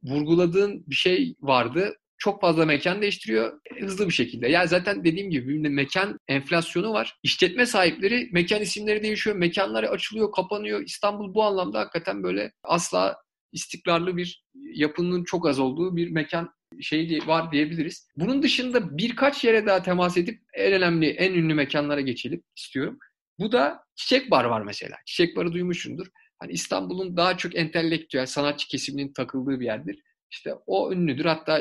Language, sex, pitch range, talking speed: Turkish, male, 140-195 Hz, 150 wpm